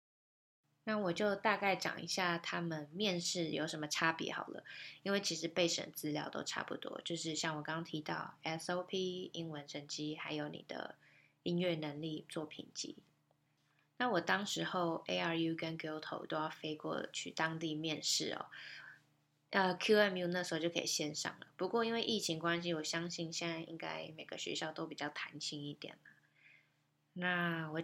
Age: 20-39